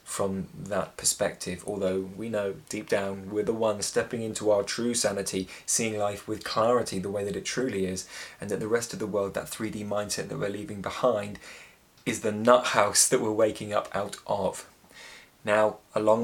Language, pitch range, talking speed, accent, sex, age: English, 100-115 Hz, 190 wpm, British, male, 20-39